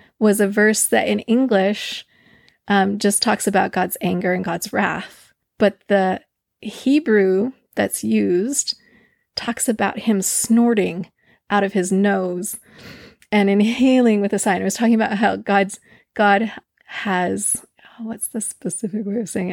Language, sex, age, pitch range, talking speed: English, female, 30-49, 190-230 Hz, 150 wpm